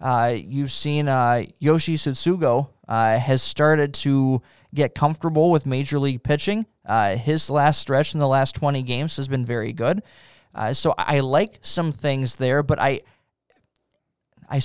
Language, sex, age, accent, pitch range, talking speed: English, male, 20-39, American, 125-150 Hz, 160 wpm